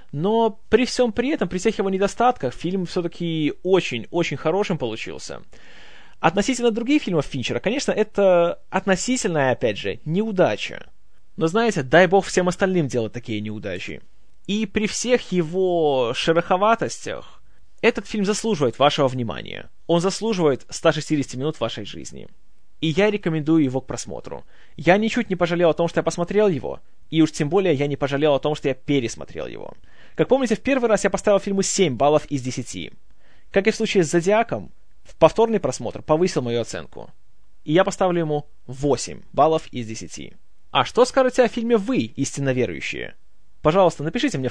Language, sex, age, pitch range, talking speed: Russian, male, 20-39, 140-205 Hz, 165 wpm